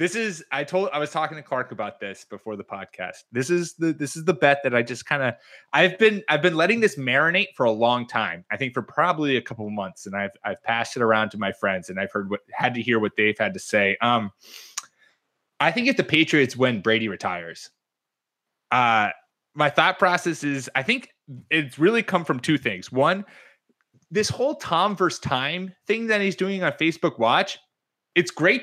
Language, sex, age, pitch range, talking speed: English, male, 20-39, 120-180 Hz, 215 wpm